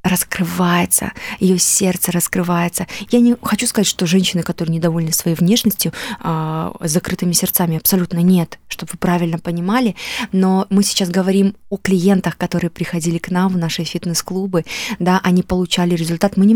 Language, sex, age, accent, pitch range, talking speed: Russian, female, 20-39, native, 175-195 Hz, 155 wpm